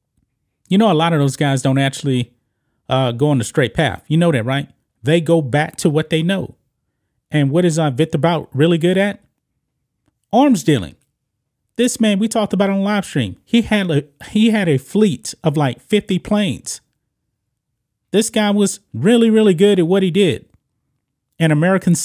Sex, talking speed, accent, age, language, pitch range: male, 180 wpm, American, 30-49, English, 130-170 Hz